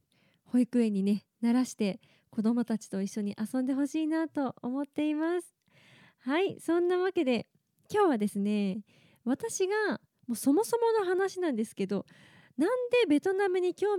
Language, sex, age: Japanese, female, 20-39